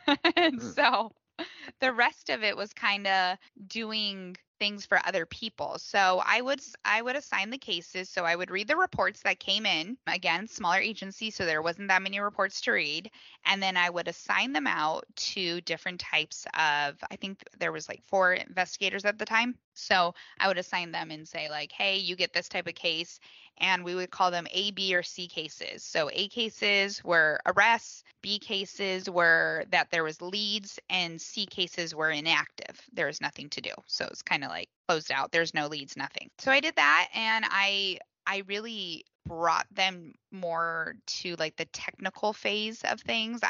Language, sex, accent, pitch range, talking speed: English, female, American, 170-210 Hz, 190 wpm